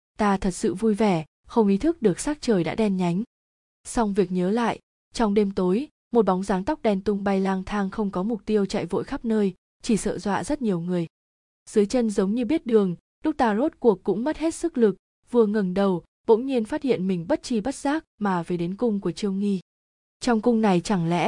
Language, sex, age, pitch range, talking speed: Vietnamese, female, 20-39, 190-230 Hz, 235 wpm